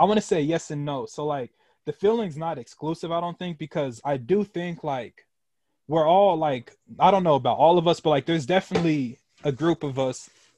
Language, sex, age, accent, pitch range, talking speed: English, male, 20-39, American, 130-155 Hz, 220 wpm